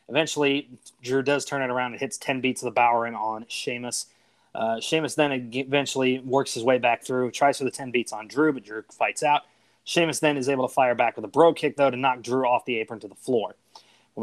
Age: 20-39